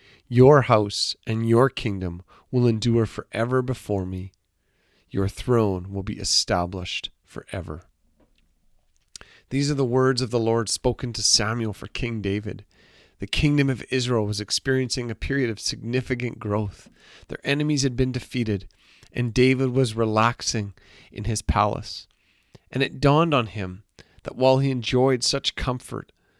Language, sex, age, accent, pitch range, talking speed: English, male, 40-59, American, 105-130 Hz, 145 wpm